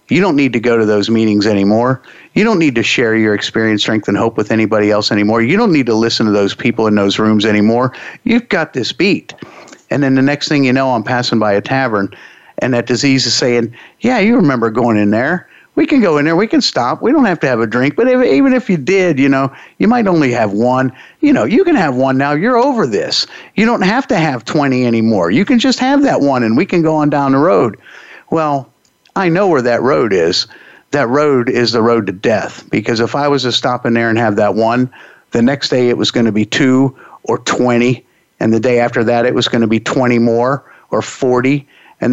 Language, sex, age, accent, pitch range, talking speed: English, male, 50-69, American, 110-135 Hz, 245 wpm